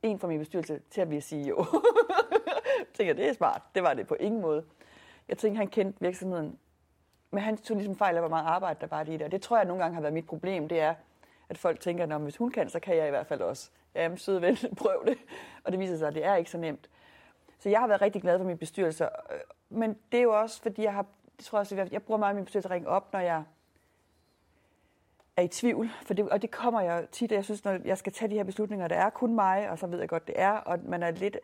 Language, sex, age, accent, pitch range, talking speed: Danish, female, 40-59, native, 165-215 Hz, 275 wpm